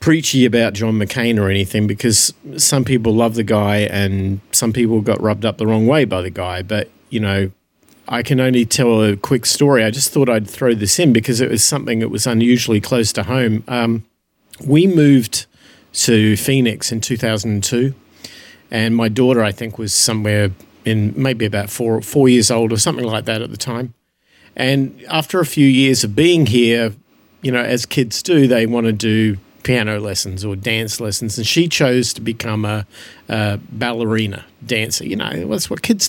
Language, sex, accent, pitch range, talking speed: English, male, Australian, 110-135 Hz, 190 wpm